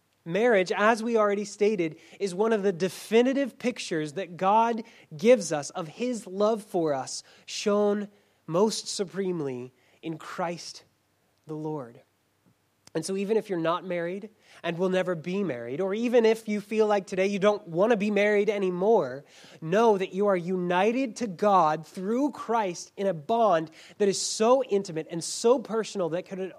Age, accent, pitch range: 20-39, American, 160-210 Hz